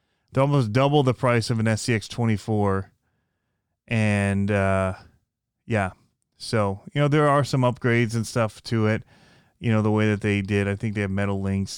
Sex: male